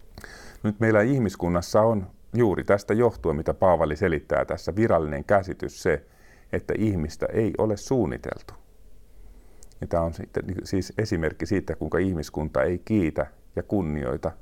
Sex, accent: male, native